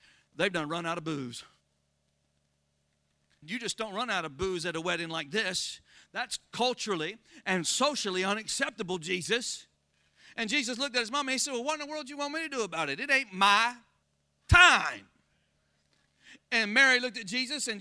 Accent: American